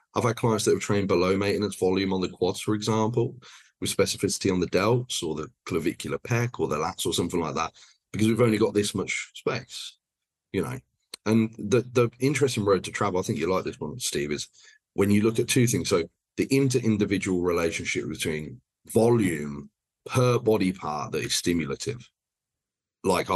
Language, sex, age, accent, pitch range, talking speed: English, male, 30-49, British, 90-115 Hz, 190 wpm